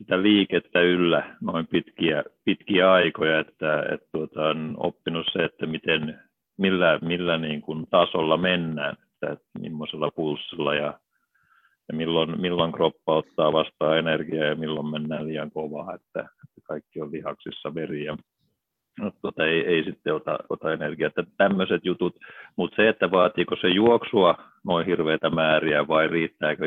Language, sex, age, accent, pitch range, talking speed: Finnish, male, 50-69, native, 75-85 Hz, 150 wpm